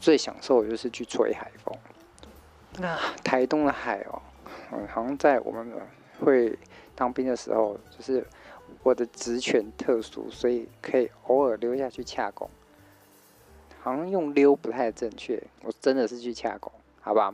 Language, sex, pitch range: Chinese, male, 110-130 Hz